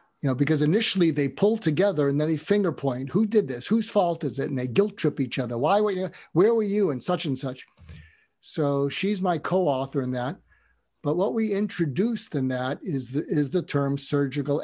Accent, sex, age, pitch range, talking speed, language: American, male, 60-79, 140-170 Hz, 215 wpm, English